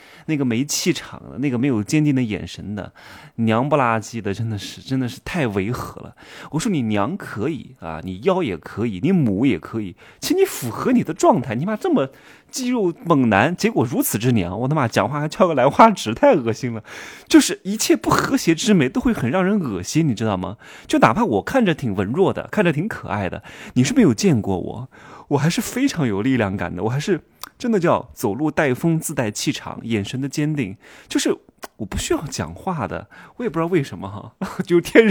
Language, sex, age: Chinese, male, 20-39